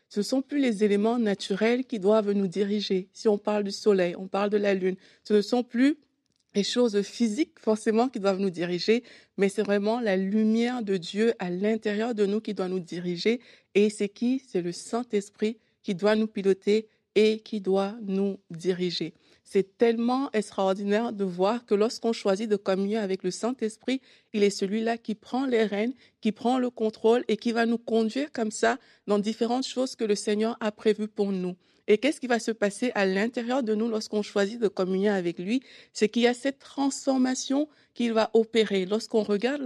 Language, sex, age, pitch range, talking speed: French, female, 50-69, 205-240 Hz, 200 wpm